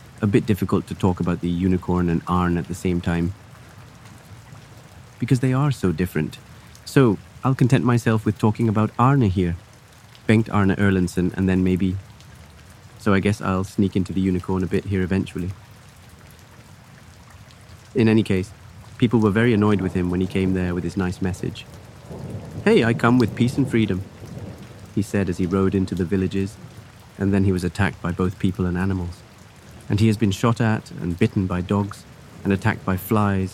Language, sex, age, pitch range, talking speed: English, male, 30-49, 95-115 Hz, 185 wpm